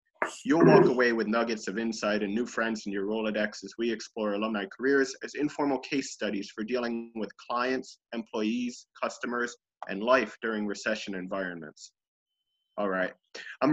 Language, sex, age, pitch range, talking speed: English, male, 30-49, 110-135 Hz, 155 wpm